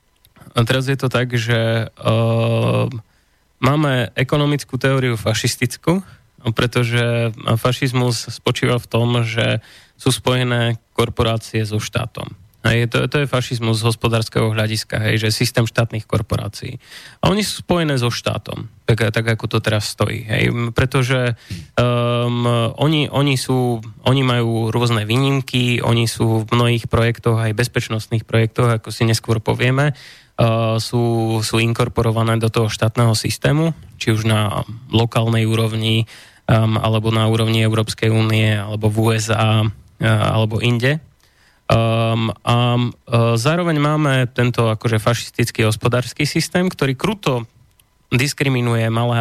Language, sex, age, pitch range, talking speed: Slovak, male, 20-39, 115-125 Hz, 130 wpm